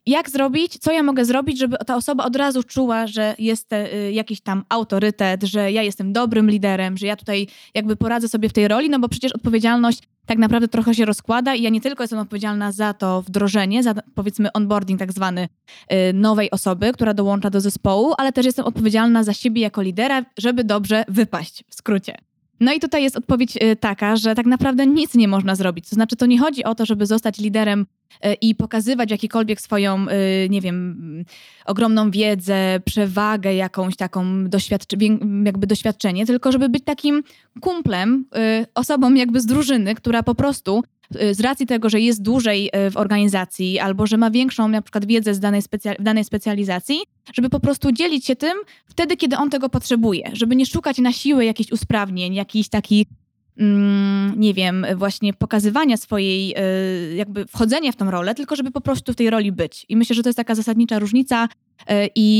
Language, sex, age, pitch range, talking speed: Polish, female, 20-39, 200-240 Hz, 180 wpm